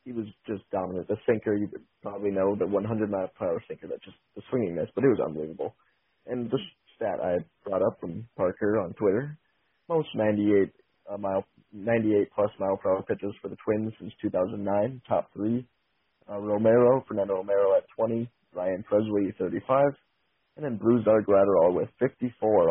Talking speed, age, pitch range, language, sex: 175 wpm, 20-39, 100-120 Hz, English, male